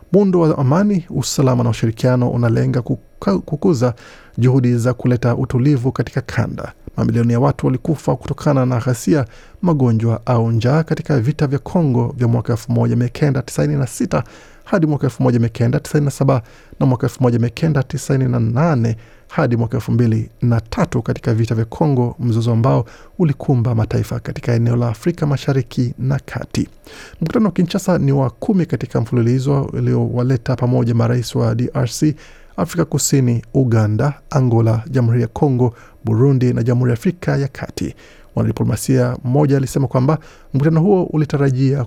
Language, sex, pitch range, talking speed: Swahili, male, 120-145 Hz, 130 wpm